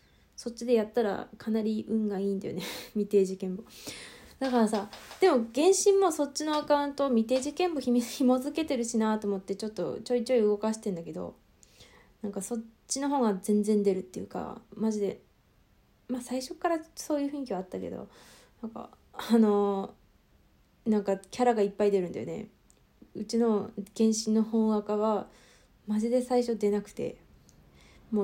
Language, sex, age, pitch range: Japanese, female, 20-39, 205-255 Hz